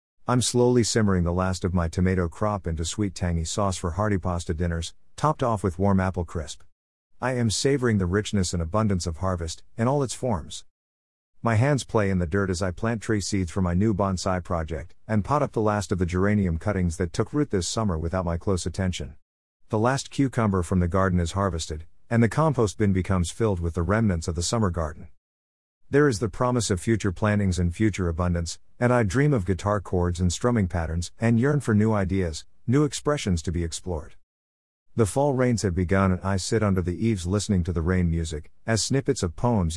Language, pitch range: English, 85-115 Hz